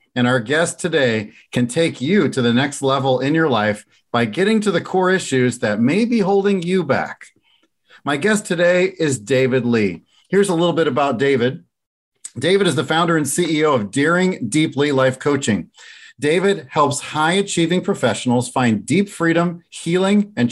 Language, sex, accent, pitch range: English, male, American, 125-170 Hz